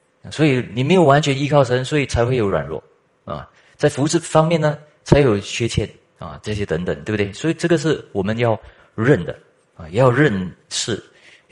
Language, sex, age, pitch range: Chinese, male, 30-49, 90-125 Hz